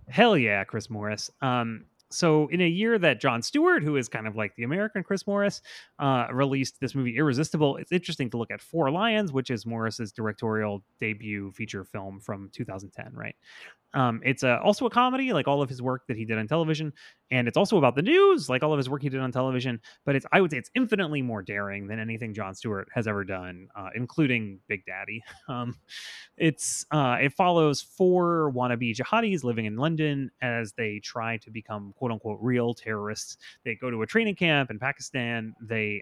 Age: 30-49